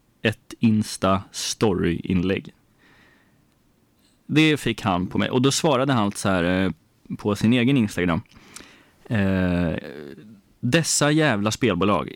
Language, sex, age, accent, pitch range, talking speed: Swedish, male, 20-39, native, 100-125 Hz, 110 wpm